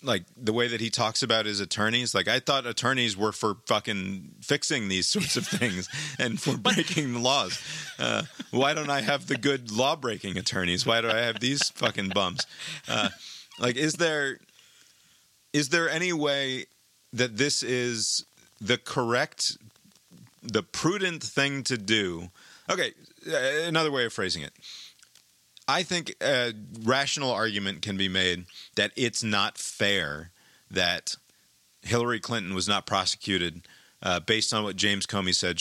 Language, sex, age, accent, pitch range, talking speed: English, male, 30-49, American, 95-135 Hz, 155 wpm